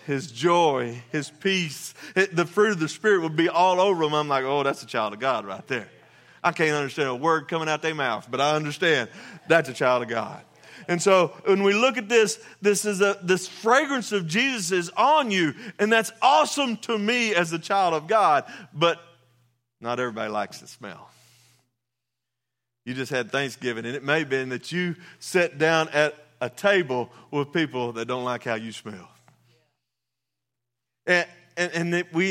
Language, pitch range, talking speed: English, 130-185 Hz, 190 wpm